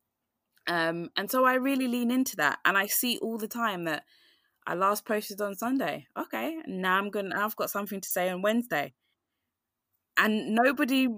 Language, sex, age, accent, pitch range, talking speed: English, female, 20-39, British, 175-220 Hz, 185 wpm